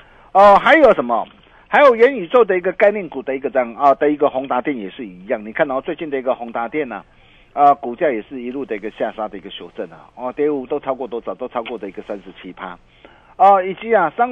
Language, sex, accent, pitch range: Chinese, male, native, 125-170 Hz